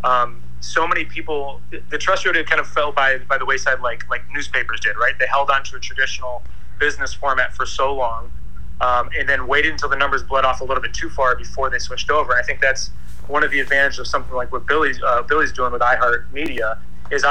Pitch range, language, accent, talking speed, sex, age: 105-140 Hz, English, American, 235 wpm, male, 30-49